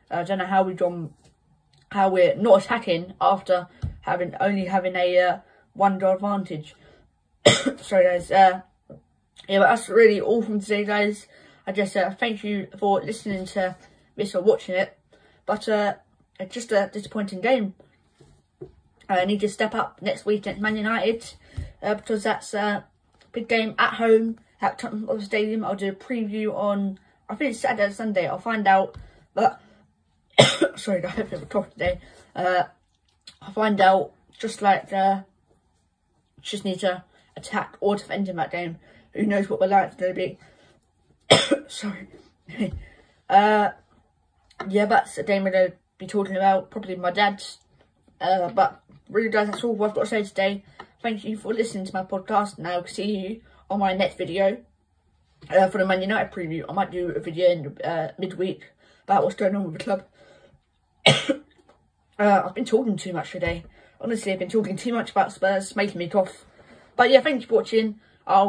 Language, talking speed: English, 180 wpm